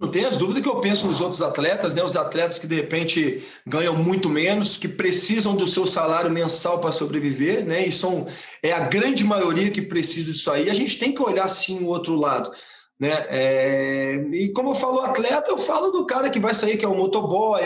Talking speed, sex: 220 wpm, male